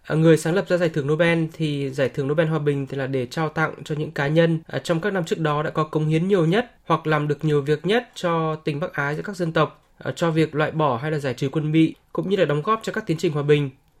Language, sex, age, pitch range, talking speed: Vietnamese, male, 20-39, 150-180 Hz, 290 wpm